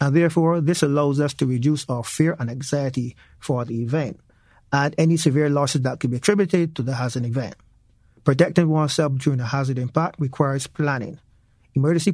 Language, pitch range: English, 130-160 Hz